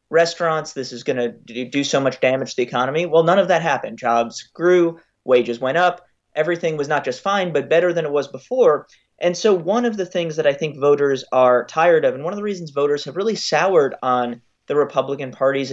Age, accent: 30-49, American